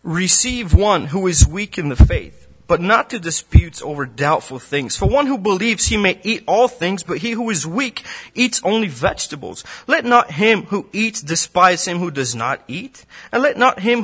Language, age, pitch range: English, 30-49, 165-240 Hz